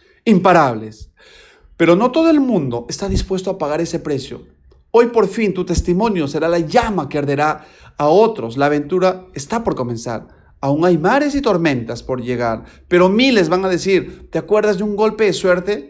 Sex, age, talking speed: male, 40-59, 180 wpm